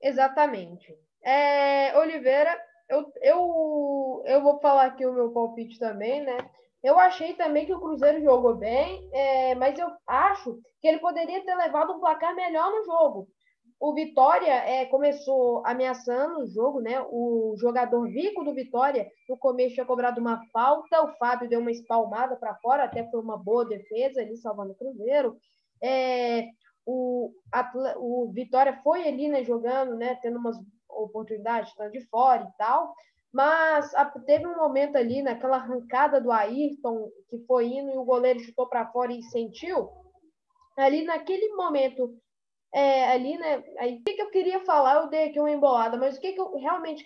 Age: 10-29